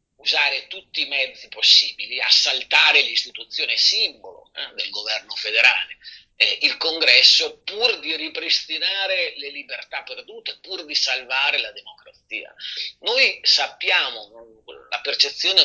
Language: Italian